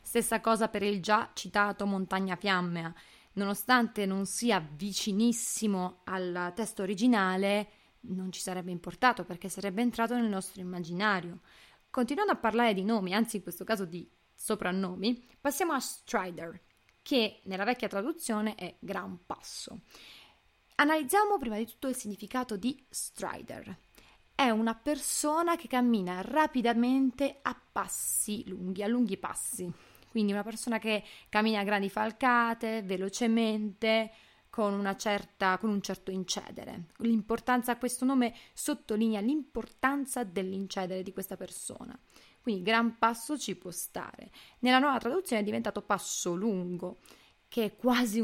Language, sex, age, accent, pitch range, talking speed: Italian, female, 20-39, native, 190-235 Hz, 135 wpm